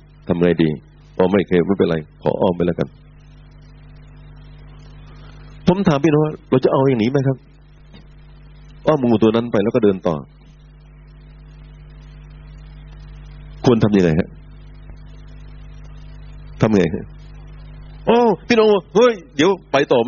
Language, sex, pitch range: Thai, male, 130-155 Hz